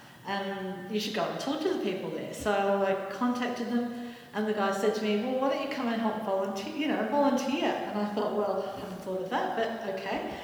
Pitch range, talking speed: 175-210 Hz, 245 wpm